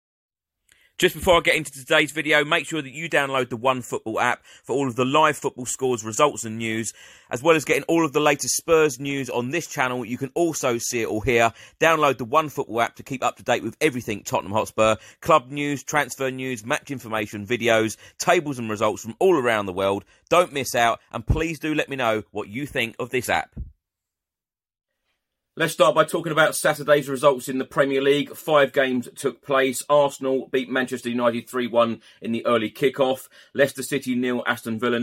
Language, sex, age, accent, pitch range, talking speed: English, male, 30-49, British, 115-140 Hz, 200 wpm